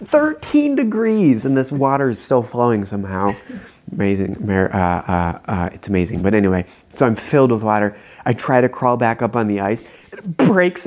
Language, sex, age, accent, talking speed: English, male, 30-49, American, 180 wpm